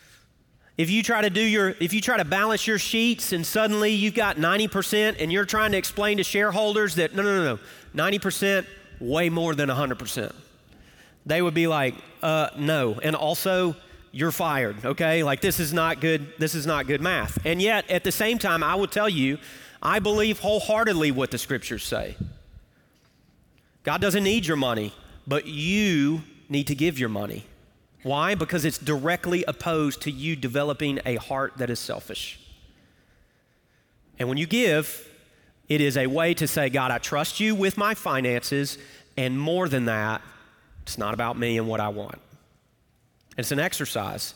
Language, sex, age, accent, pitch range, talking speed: English, male, 30-49, American, 135-190 Hz, 175 wpm